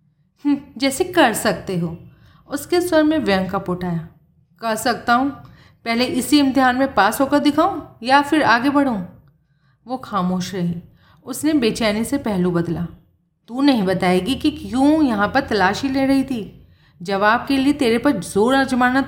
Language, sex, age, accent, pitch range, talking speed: Hindi, female, 30-49, native, 185-260 Hz, 155 wpm